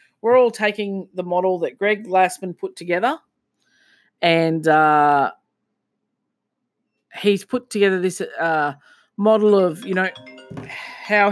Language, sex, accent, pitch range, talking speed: English, female, Australian, 160-200 Hz, 115 wpm